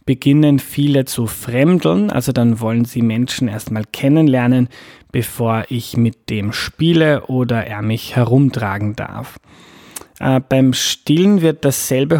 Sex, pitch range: male, 120-145 Hz